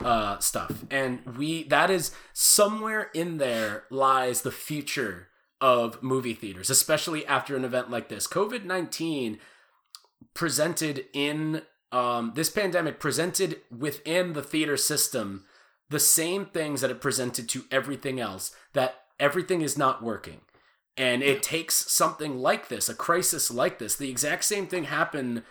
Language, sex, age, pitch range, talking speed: English, male, 20-39, 125-160 Hz, 145 wpm